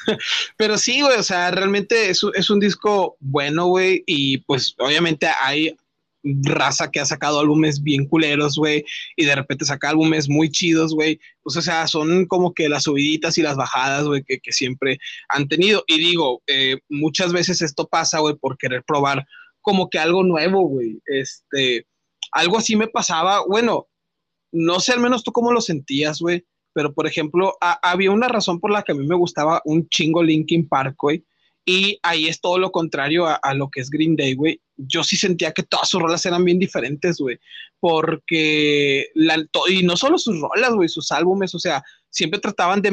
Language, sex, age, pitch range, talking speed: Spanish, male, 30-49, 150-180 Hz, 195 wpm